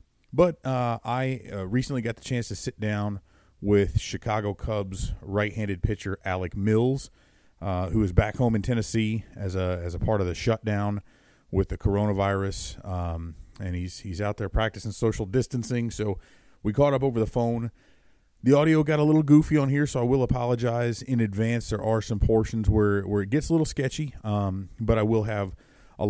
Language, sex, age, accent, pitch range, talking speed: English, male, 30-49, American, 95-120 Hz, 190 wpm